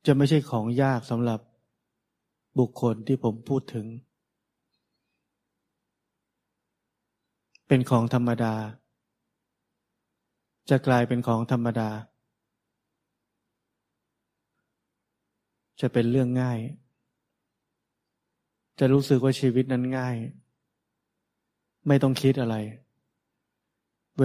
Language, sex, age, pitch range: Thai, male, 20-39, 115-130 Hz